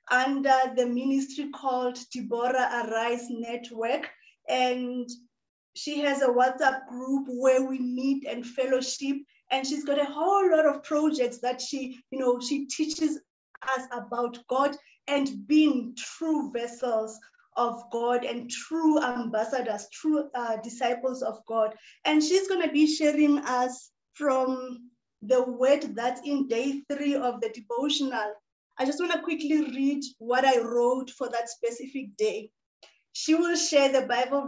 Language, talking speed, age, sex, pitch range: English, 145 wpm, 20-39, female, 240-285 Hz